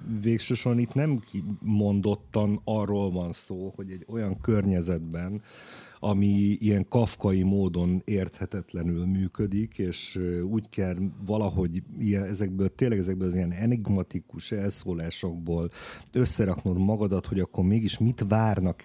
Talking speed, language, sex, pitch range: 115 wpm, Hungarian, male, 95-115 Hz